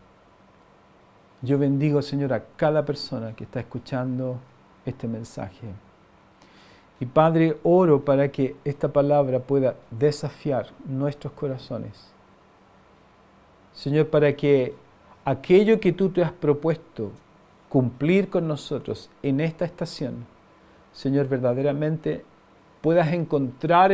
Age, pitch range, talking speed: 50-69, 125-155 Hz, 105 wpm